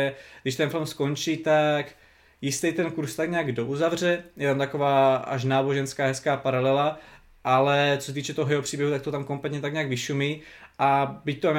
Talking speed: 180 wpm